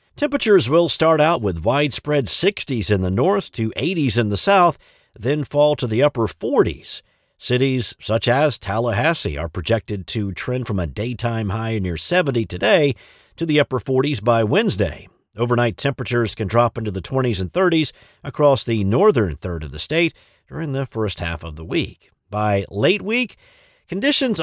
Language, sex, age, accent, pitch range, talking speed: English, male, 50-69, American, 105-150 Hz, 170 wpm